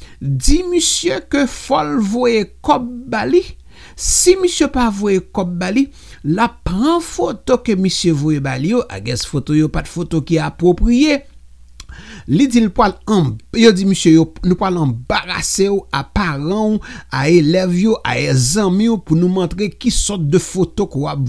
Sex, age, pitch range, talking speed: male, 50-69, 150-225 Hz, 150 wpm